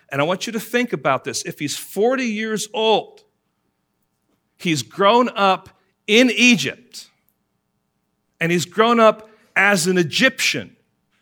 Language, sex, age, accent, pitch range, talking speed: English, male, 50-69, American, 160-220 Hz, 135 wpm